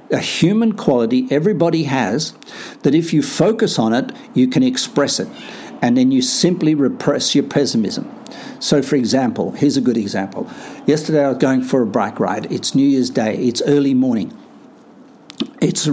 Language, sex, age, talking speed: English, male, 60-79, 170 wpm